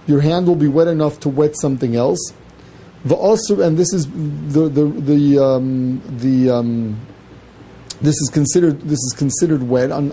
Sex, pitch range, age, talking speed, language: male, 145-175 Hz, 40-59, 160 wpm, English